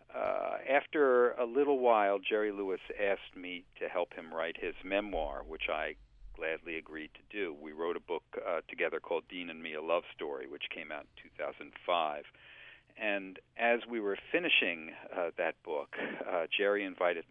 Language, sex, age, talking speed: English, male, 50-69, 175 wpm